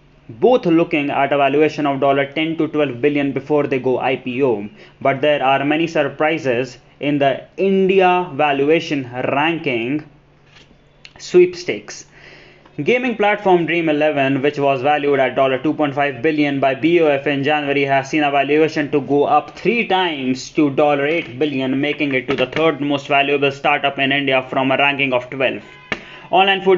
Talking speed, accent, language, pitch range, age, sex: 160 wpm, Indian, English, 145-170 Hz, 20-39, male